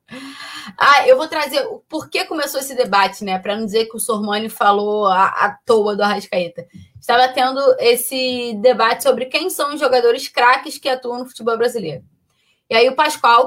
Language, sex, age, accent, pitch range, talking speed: Portuguese, female, 20-39, Brazilian, 225-290 Hz, 185 wpm